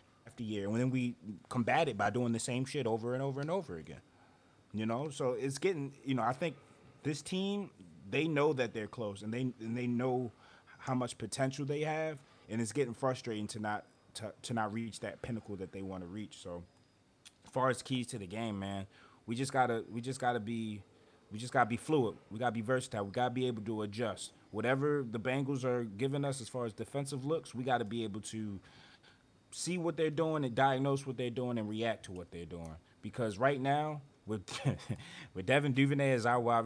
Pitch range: 110-140 Hz